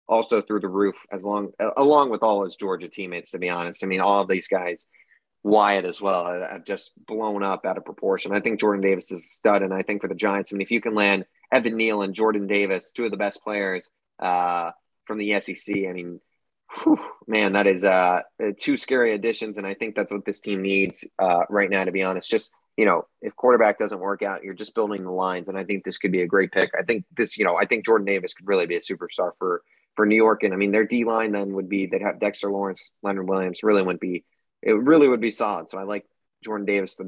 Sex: male